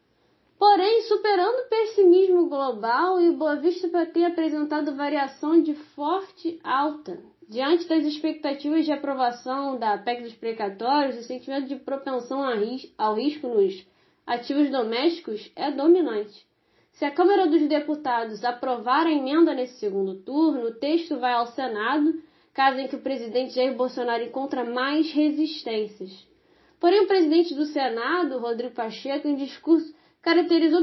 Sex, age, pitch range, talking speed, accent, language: female, 10-29, 240-320 Hz, 140 wpm, Brazilian, Portuguese